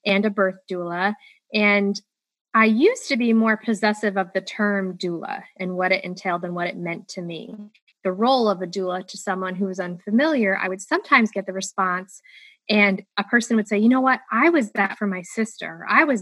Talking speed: 210 wpm